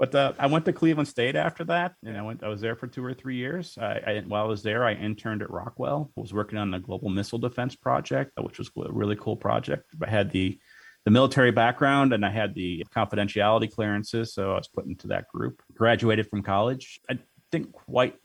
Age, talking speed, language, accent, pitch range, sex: 30-49, 230 wpm, English, American, 95-115 Hz, male